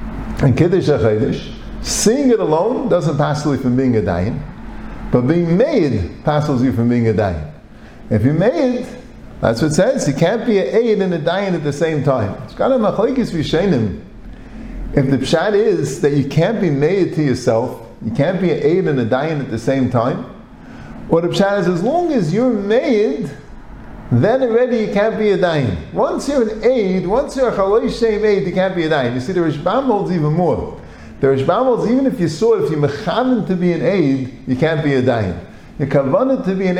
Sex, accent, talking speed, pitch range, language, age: male, American, 205 wpm, 140-215 Hz, English, 50-69